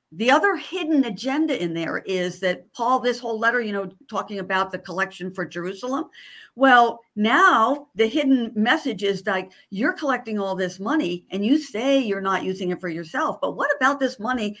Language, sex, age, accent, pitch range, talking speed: English, female, 50-69, American, 190-255 Hz, 190 wpm